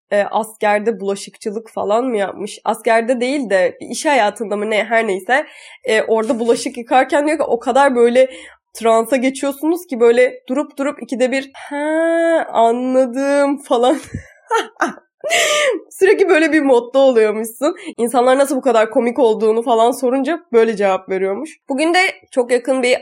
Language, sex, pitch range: Turkish, female, 215-295 Hz